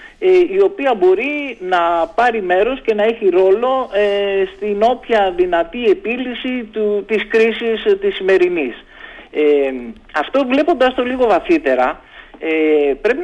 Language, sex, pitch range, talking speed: Greek, male, 150-230 Hz, 110 wpm